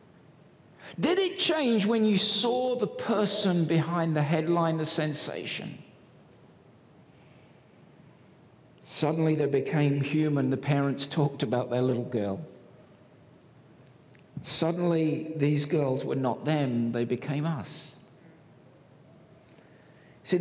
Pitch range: 140-195 Hz